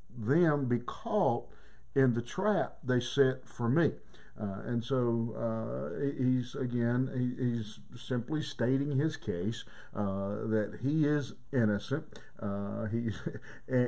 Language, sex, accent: English, male, American